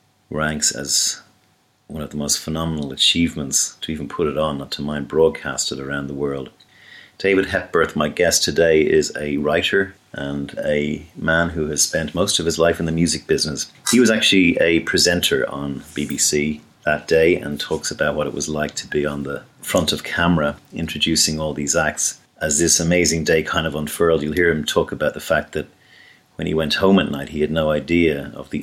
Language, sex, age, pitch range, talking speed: English, male, 40-59, 70-80 Hz, 205 wpm